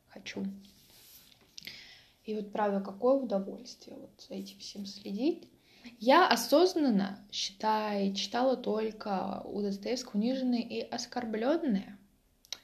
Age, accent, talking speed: 20-39, native, 95 wpm